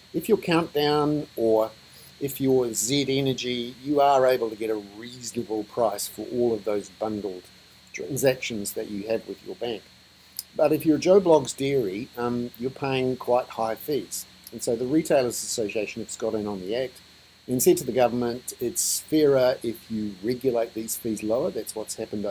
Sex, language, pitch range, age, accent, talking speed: male, English, 110-135 Hz, 50-69, Australian, 180 wpm